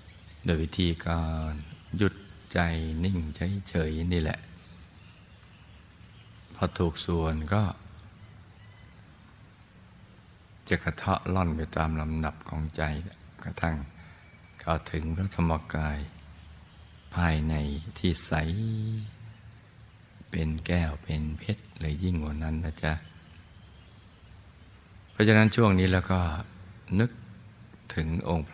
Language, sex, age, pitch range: Thai, male, 60-79, 80-95 Hz